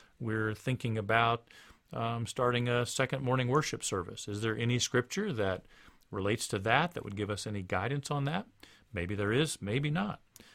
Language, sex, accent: English, male, American